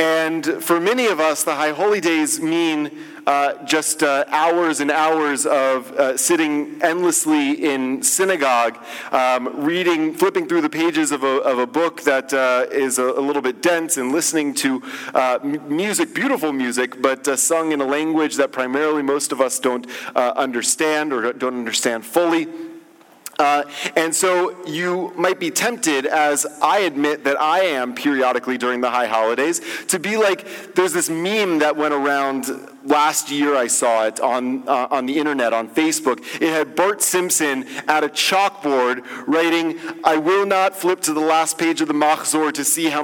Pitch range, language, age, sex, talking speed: 140-180 Hz, English, 30-49, male, 175 wpm